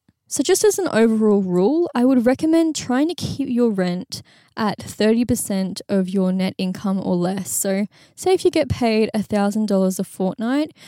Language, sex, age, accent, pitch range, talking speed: English, female, 10-29, Australian, 185-225 Hz, 170 wpm